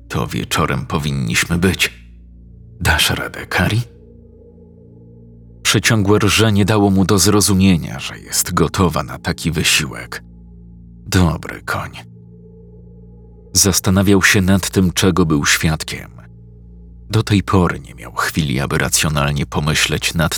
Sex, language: male, Polish